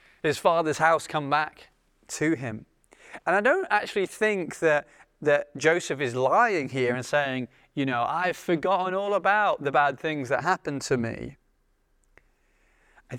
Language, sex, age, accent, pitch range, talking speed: English, male, 30-49, British, 125-170 Hz, 155 wpm